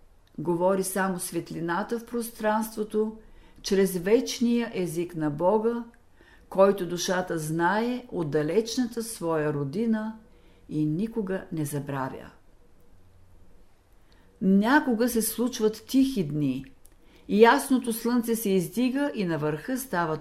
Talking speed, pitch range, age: 100 wpm, 150-225 Hz, 50-69